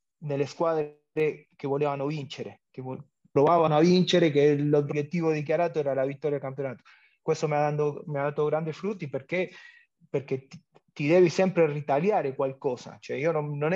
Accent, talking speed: Argentinian, 160 wpm